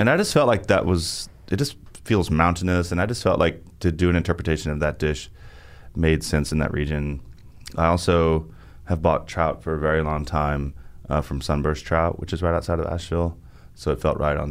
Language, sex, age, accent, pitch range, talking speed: English, male, 30-49, American, 75-90 Hz, 220 wpm